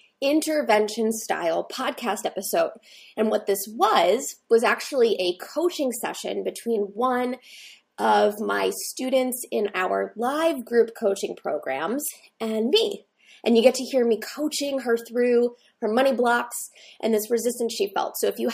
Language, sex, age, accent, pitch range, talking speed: English, female, 20-39, American, 210-270 Hz, 150 wpm